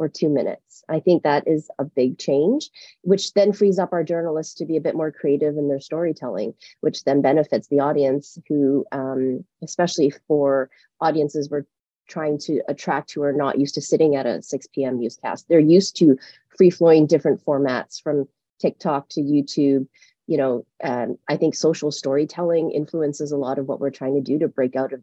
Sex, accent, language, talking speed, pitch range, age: female, American, English, 195 wpm, 140-165 Hz, 30-49